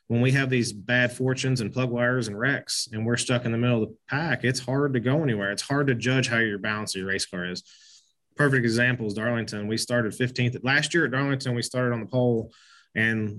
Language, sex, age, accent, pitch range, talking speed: English, male, 20-39, American, 115-130 Hz, 240 wpm